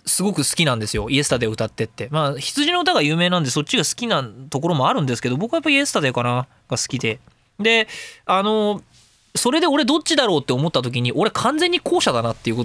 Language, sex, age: Japanese, male, 20-39